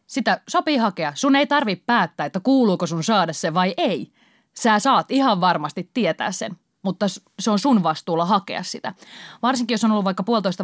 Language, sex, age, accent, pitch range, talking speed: Finnish, female, 30-49, native, 180-230 Hz, 185 wpm